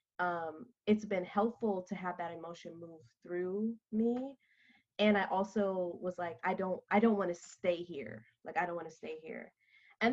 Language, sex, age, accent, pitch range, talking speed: English, female, 20-39, American, 180-245 Hz, 190 wpm